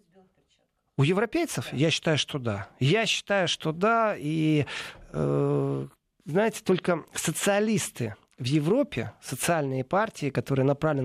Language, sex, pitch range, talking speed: Russian, male, 145-195 Hz, 115 wpm